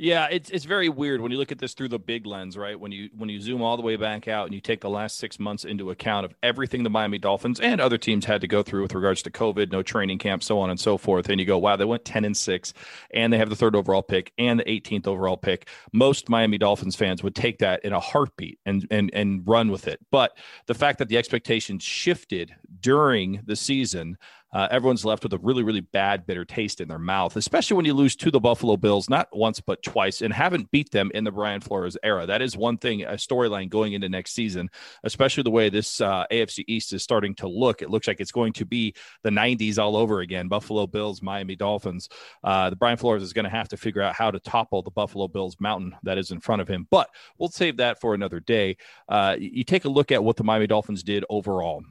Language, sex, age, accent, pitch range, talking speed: English, male, 40-59, American, 100-120 Hz, 255 wpm